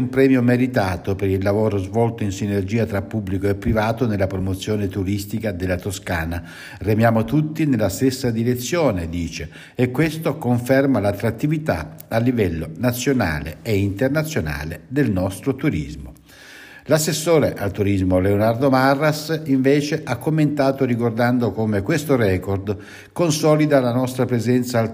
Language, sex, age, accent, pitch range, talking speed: Italian, male, 60-79, native, 100-130 Hz, 130 wpm